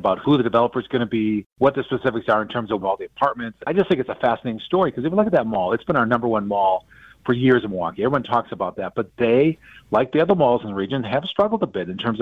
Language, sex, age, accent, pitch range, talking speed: English, male, 40-59, American, 110-145 Hz, 300 wpm